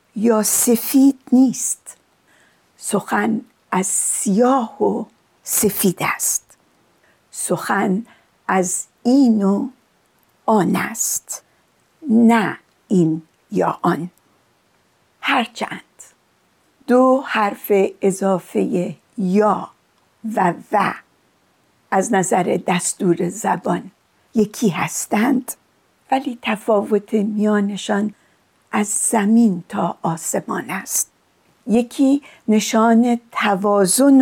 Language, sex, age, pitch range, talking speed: Persian, female, 50-69, 195-235 Hz, 75 wpm